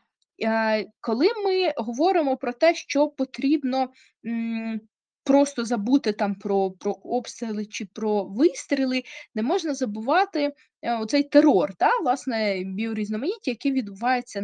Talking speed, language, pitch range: 110 wpm, Ukrainian, 200-265 Hz